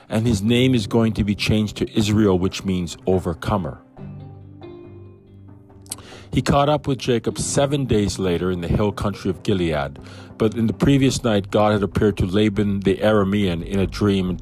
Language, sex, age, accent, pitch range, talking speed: English, male, 50-69, American, 95-120 Hz, 180 wpm